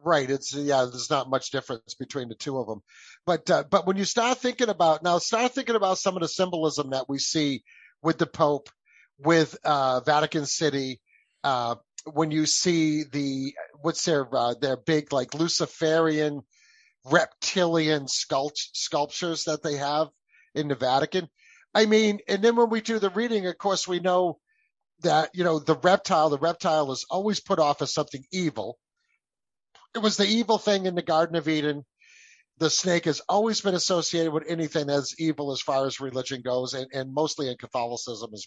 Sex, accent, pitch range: male, American, 140-200 Hz